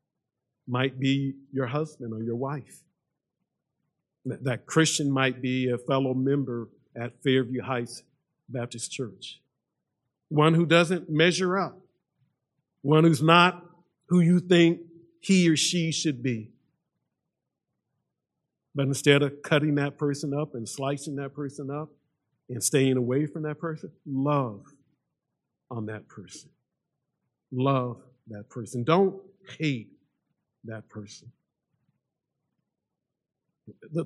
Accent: American